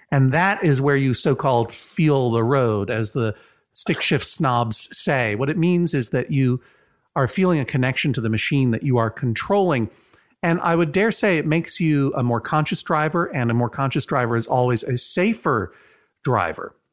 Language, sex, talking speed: English, male, 190 wpm